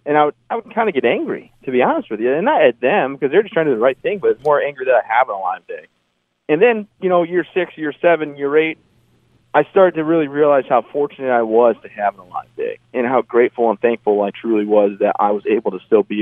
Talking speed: 280 wpm